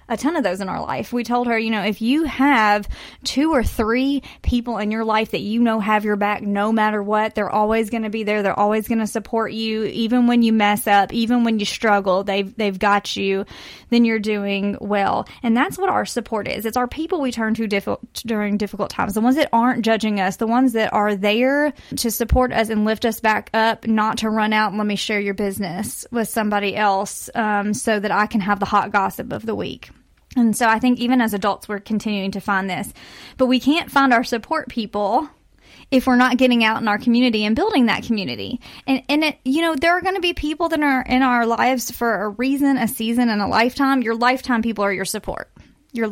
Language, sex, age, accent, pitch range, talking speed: English, female, 20-39, American, 210-245 Hz, 235 wpm